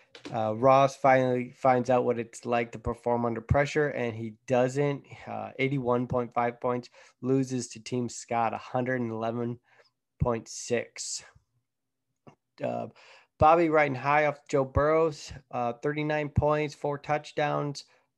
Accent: American